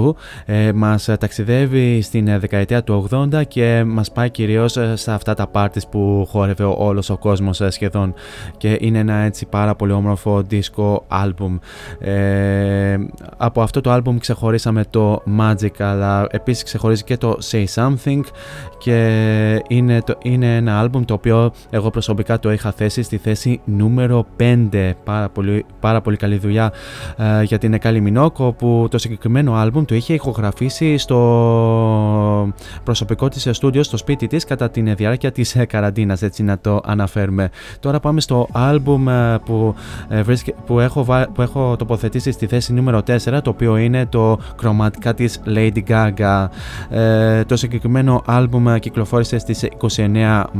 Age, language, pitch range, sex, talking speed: 20-39, Greek, 105-120 Hz, male, 145 wpm